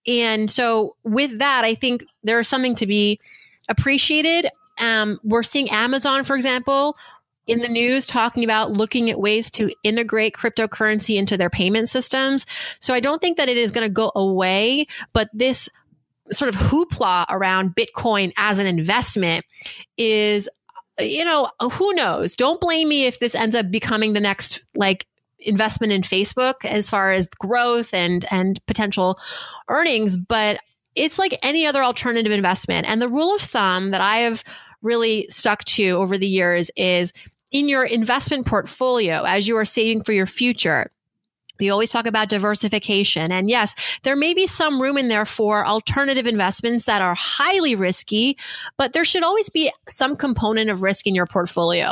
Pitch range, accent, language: 205-260 Hz, American, English